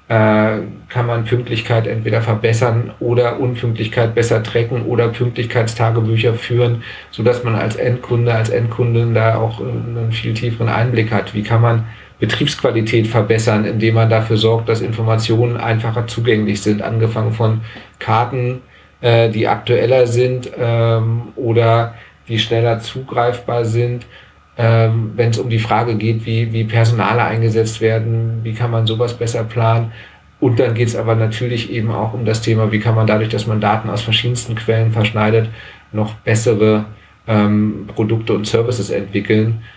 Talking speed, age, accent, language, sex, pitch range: 145 wpm, 40-59, German, German, male, 110-120 Hz